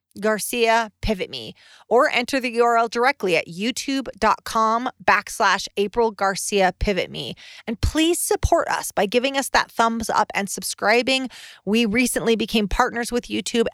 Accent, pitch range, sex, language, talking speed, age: American, 185-240 Hz, female, English, 145 wpm, 30-49